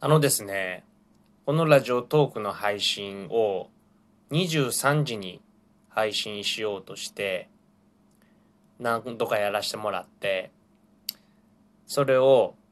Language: Japanese